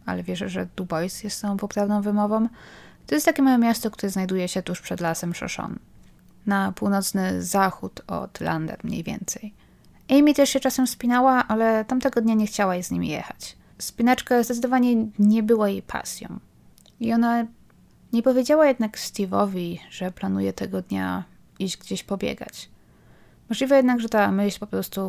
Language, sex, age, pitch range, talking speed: Polish, female, 20-39, 175-210 Hz, 160 wpm